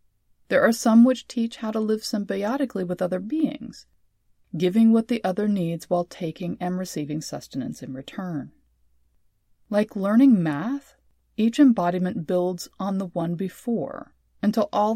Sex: female